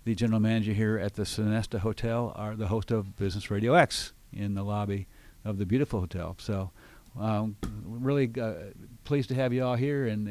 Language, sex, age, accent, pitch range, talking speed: English, male, 50-69, American, 105-125 Hz, 190 wpm